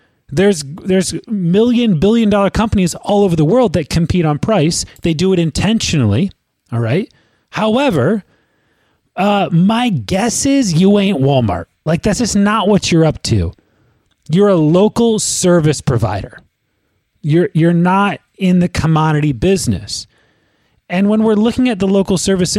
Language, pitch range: English, 155-210 Hz